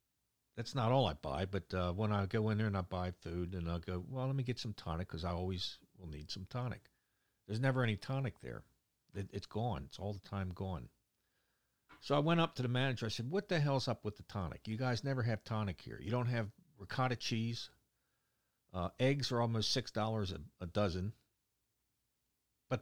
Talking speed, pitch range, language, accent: 215 wpm, 90-125 Hz, English, American